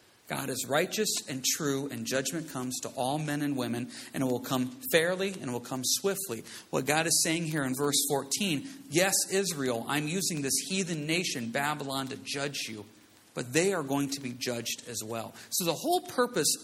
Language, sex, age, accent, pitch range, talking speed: English, male, 40-59, American, 150-230 Hz, 200 wpm